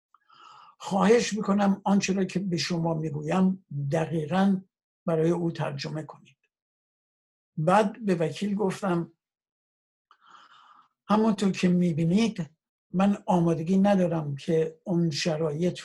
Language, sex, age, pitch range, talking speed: Persian, male, 60-79, 170-210 Hz, 100 wpm